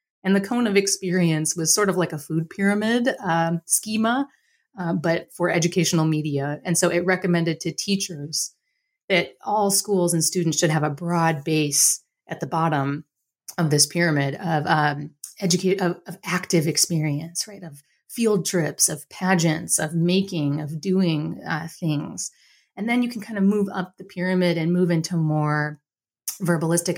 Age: 30-49